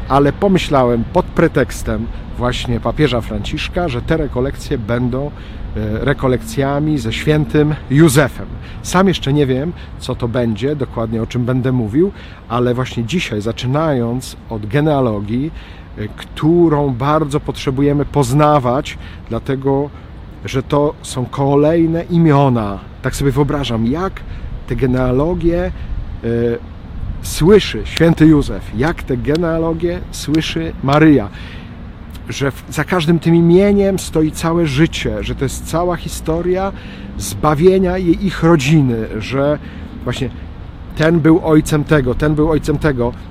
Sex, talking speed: male, 115 wpm